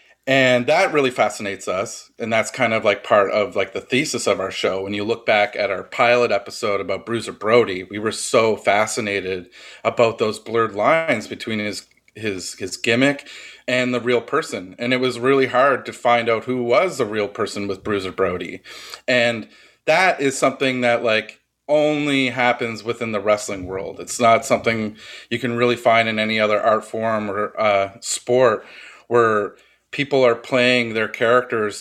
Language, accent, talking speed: English, American, 180 wpm